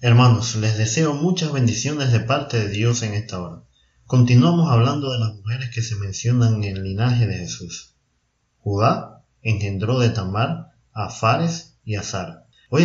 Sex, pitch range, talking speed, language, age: male, 105-125 Hz, 160 wpm, Spanish, 30-49